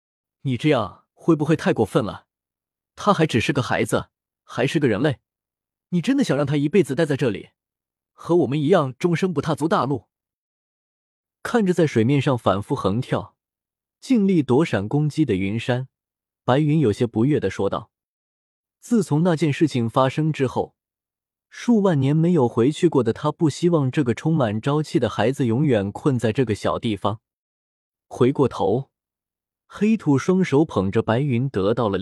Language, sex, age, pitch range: Chinese, male, 20-39, 115-160 Hz